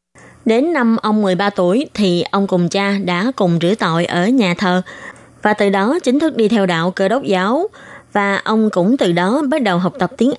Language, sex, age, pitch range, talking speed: Vietnamese, female, 20-39, 180-230 Hz, 215 wpm